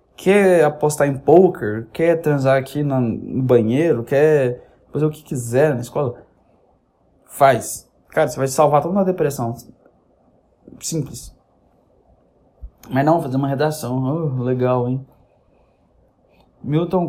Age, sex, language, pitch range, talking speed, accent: 20-39, male, Portuguese, 120-150 Hz, 120 wpm, Brazilian